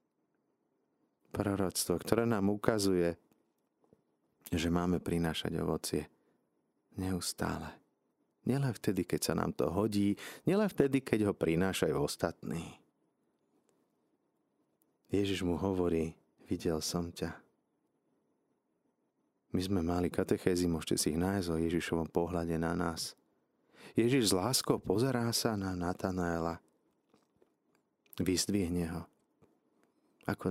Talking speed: 100 wpm